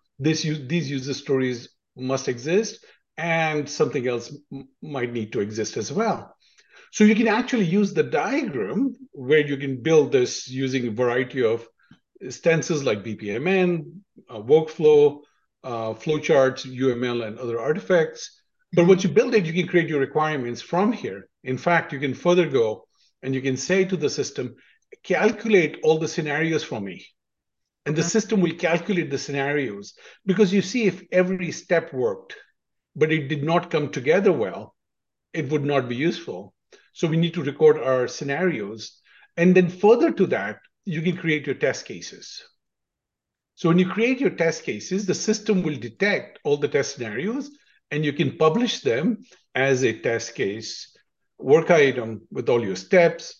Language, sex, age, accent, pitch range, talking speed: English, male, 50-69, Indian, 135-190 Hz, 165 wpm